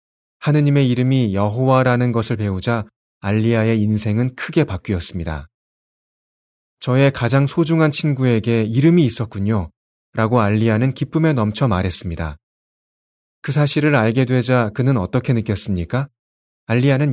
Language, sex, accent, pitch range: Korean, male, native, 100-135 Hz